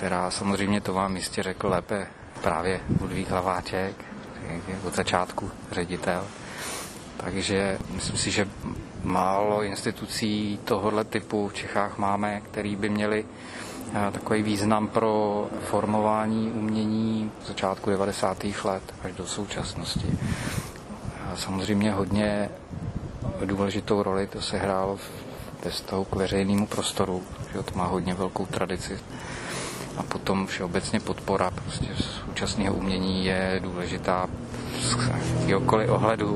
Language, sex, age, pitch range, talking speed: Czech, male, 30-49, 95-110 Hz, 115 wpm